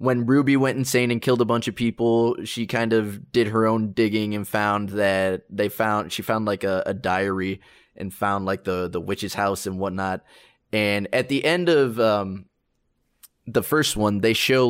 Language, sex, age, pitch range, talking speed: English, male, 20-39, 95-115 Hz, 195 wpm